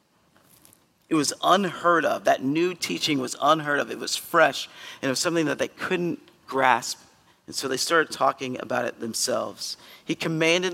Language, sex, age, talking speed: English, male, 40-59, 175 wpm